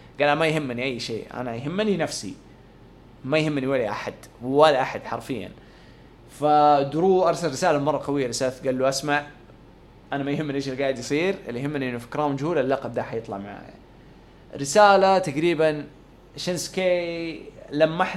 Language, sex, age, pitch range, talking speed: English, male, 20-39, 125-160 Hz, 145 wpm